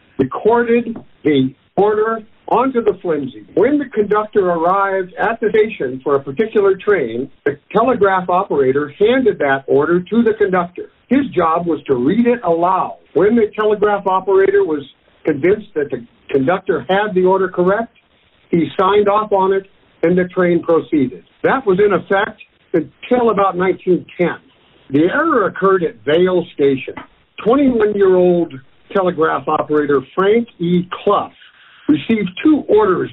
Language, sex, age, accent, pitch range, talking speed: English, male, 60-79, American, 170-220 Hz, 140 wpm